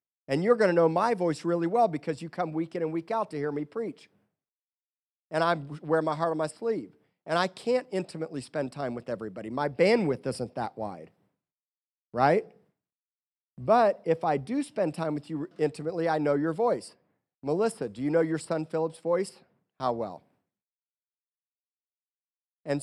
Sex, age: male, 40-59